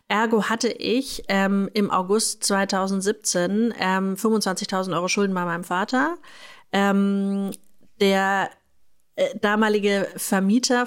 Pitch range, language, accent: 185-220 Hz, German, German